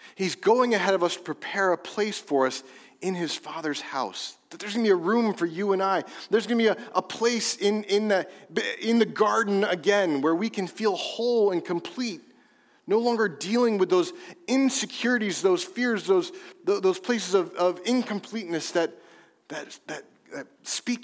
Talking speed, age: 190 wpm, 30-49